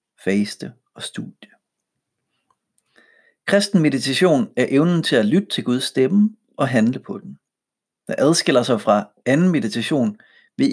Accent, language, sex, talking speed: native, Danish, male, 135 wpm